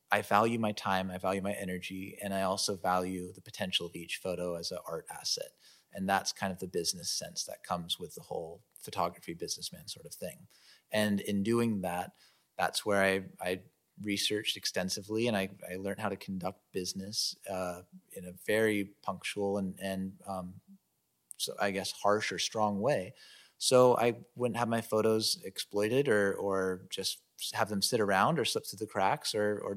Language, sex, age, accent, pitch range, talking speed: English, male, 30-49, American, 95-110 Hz, 185 wpm